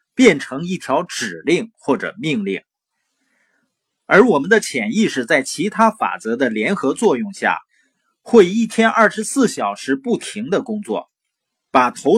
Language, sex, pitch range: Chinese, male, 180-260 Hz